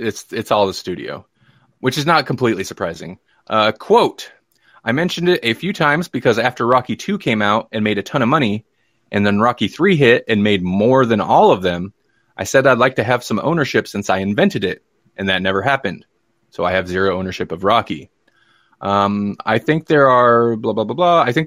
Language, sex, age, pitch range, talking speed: English, male, 20-39, 100-135 Hz, 210 wpm